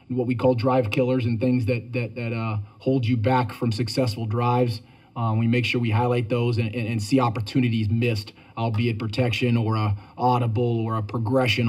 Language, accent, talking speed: English, American, 195 wpm